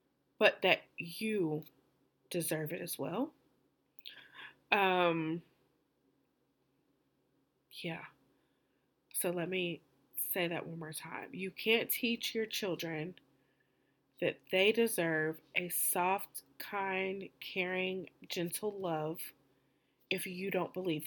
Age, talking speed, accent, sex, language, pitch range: 20-39, 100 wpm, American, female, English, 165-195 Hz